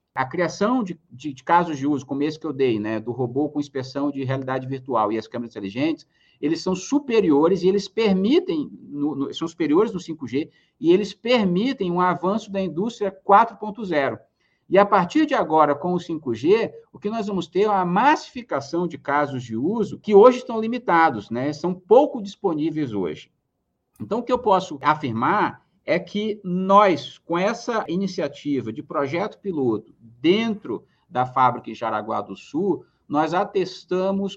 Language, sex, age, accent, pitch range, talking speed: Portuguese, male, 50-69, Brazilian, 135-195 Hz, 170 wpm